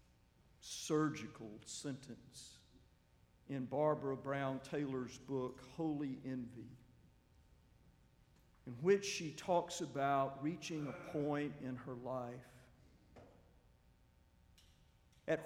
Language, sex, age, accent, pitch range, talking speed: English, male, 50-69, American, 115-170 Hz, 80 wpm